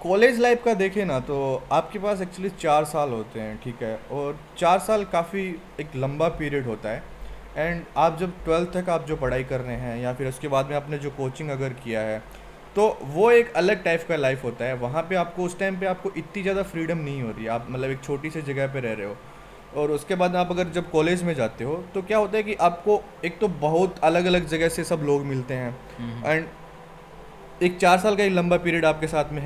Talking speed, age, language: 235 wpm, 20-39, Hindi